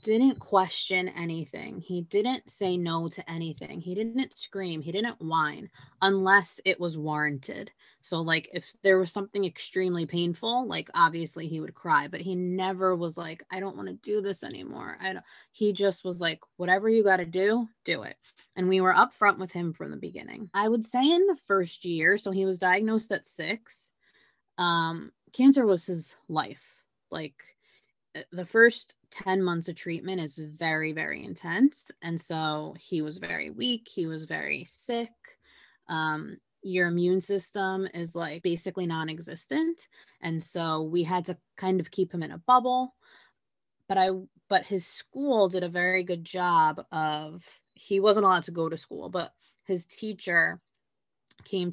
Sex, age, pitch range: female, 20-39, 165-200 Hz